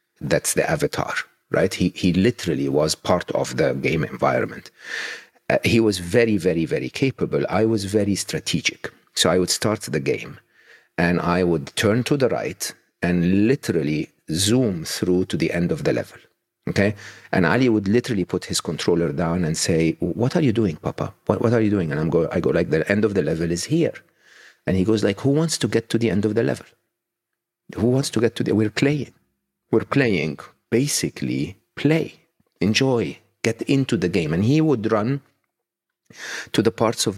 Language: English